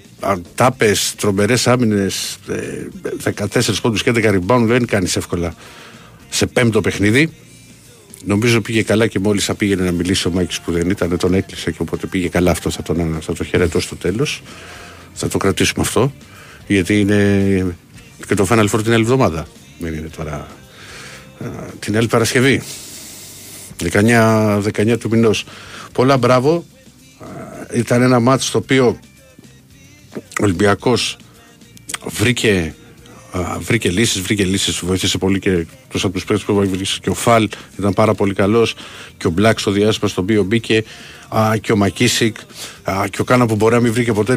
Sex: male